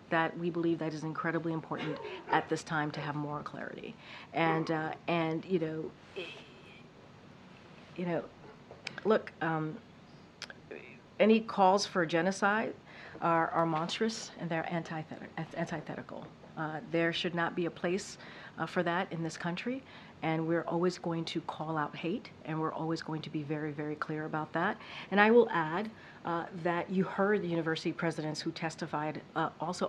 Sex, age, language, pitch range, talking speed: female, 40-59, English, 155-175 Hz, 160 wpm